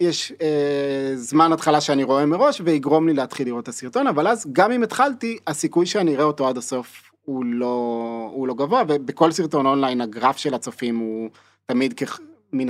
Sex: male